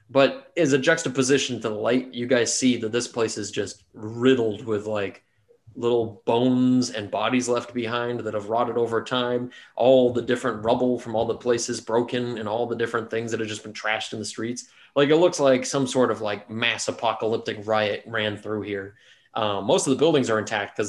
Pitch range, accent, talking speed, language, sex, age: 110-125 Hz, American, 210 wpm, English, male, 20-39